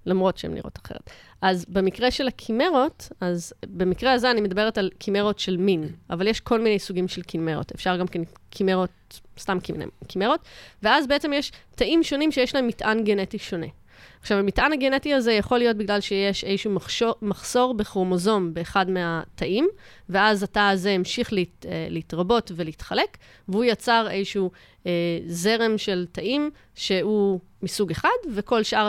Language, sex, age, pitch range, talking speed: Hebrew, female, 20-39, 175-220 Hz, 145 wpm